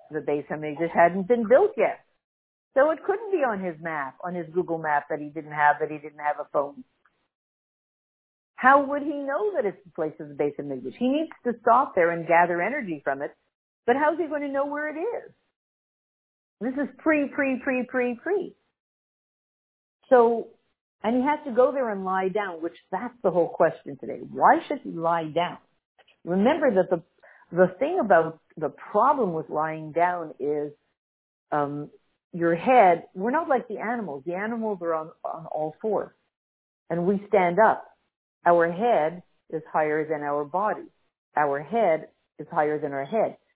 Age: 50-69